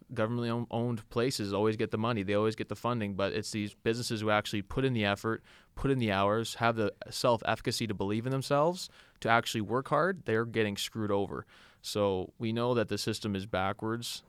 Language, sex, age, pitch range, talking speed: English, male, 20-39, 100-110 Hz, 200 wpm